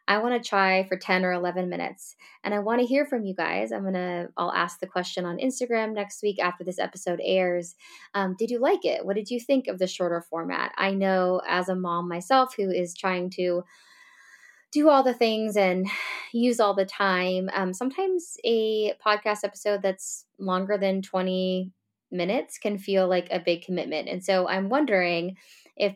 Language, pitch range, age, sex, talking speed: English, 185-230 Hz, 20-39, female, 195 wpm